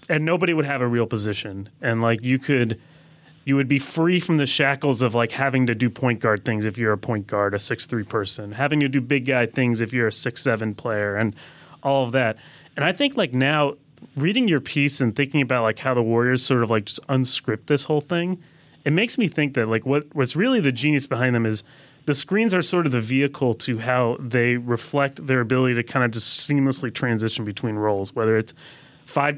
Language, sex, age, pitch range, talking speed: English, male, 30-49, 120-145 Hz, 235 wpm